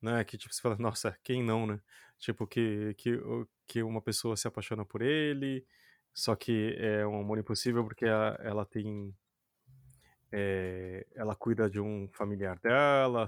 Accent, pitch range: Brazilian, 110-130 Hz